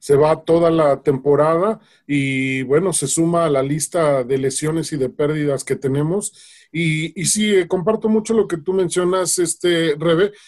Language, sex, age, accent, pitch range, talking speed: English, male, 40-59, Mexican, 145-190 Hz, 180 wpm